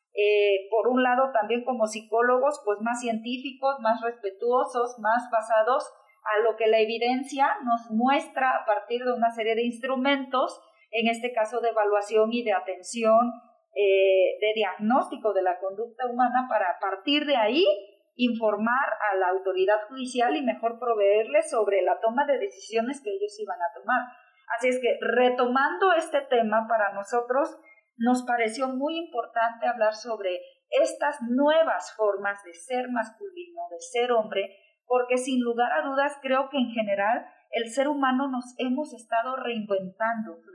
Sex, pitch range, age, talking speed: female, 220-275 Hz, 40-59, 155 wpm